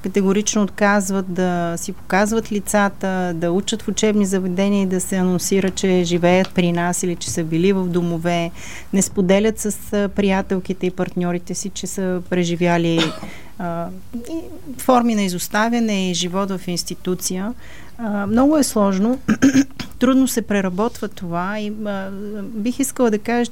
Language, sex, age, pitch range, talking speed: Bulgarian, female, 30-49, 180-215 Hz, 150 wpm